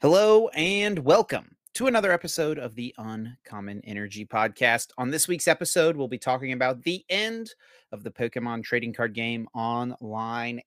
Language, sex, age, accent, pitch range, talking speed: English, male, 30-49, American, 115-170 Hz, 160 wpm